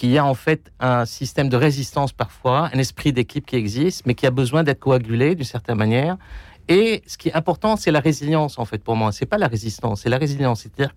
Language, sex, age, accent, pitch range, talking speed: French, male, 50-69, French, 110-155 Hz, 240 wpm